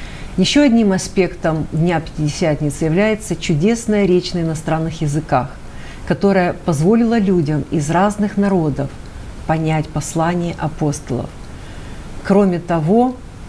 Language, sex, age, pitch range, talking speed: Russian, female, 50-69, 155-195 Hz, 100 wpm